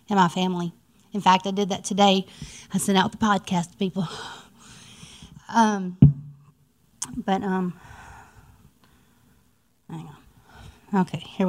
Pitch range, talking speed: 185-205 Hz, 120 wpm